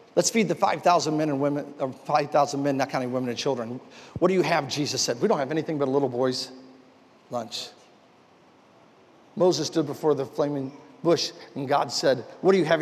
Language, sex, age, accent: English, male, 50-69, American